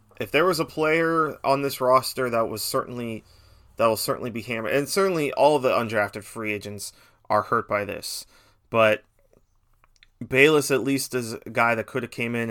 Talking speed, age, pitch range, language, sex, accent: 190 wpm, 30-49, 105-125 Hz, English, male, American